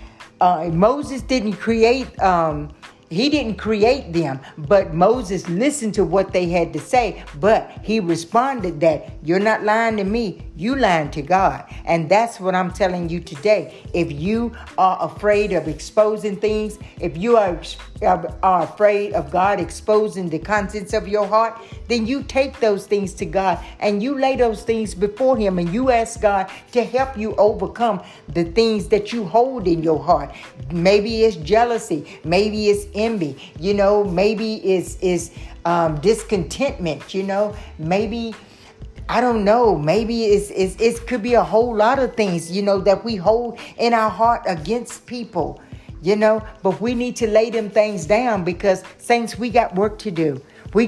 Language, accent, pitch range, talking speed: English, American, 185-225 Hz, 170 wpm